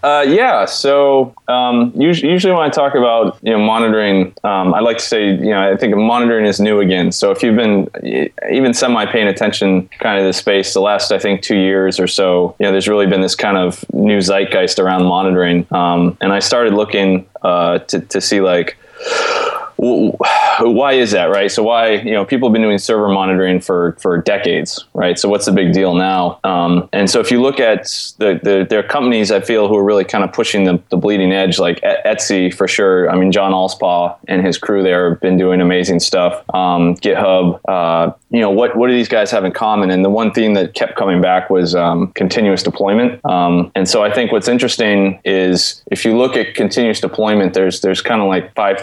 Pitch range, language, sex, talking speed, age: 95-110 Hz, English, male, 215 wpm, 20-39